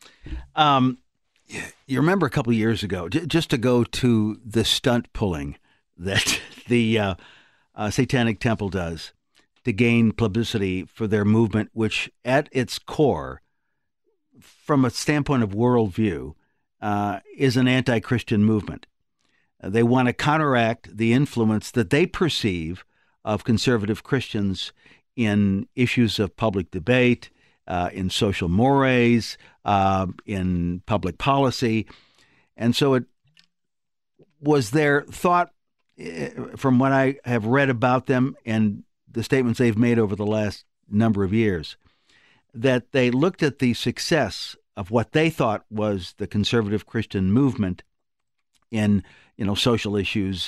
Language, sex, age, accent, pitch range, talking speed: English, male, 60-79, American, 100-130 Hz, 135 wpm